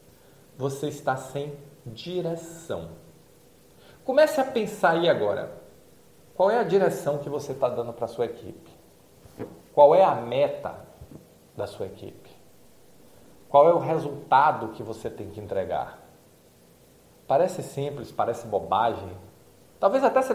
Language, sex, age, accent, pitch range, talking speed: Portuguese, male, 40-59, Brazilian, 140-205 Hz, 130 wpm